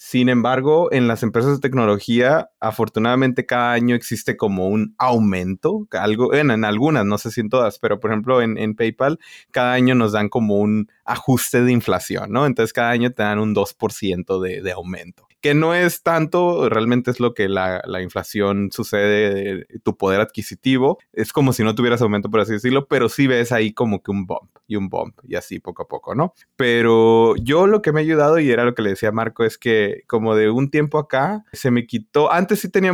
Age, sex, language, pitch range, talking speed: 30-49, male, Spanish, 105-135 Hz, 215 wpm